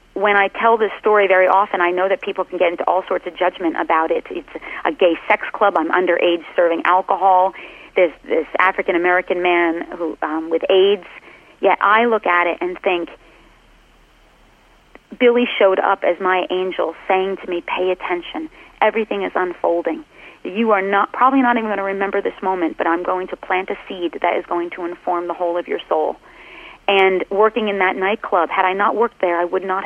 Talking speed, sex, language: 200 wpm, female, English